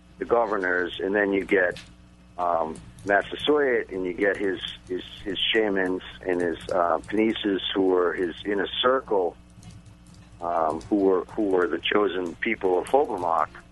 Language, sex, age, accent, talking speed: English, male, 50-69, American, 150 wpm